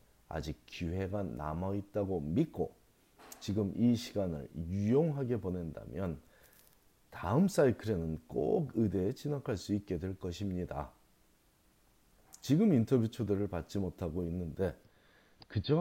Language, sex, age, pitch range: Korean, male, 40-59, 90-125 Hz